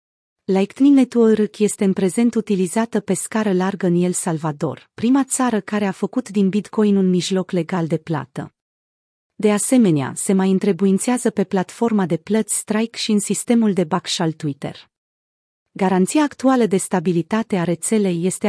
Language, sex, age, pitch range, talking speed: Romanian, female, 30-49, 175-220 Hz, 155 wpm